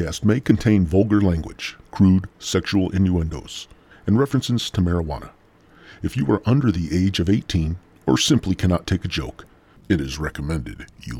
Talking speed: 155 wpm